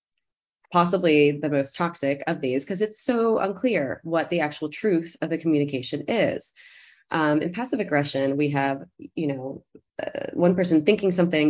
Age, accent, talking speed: 20-39, American, 160 wpm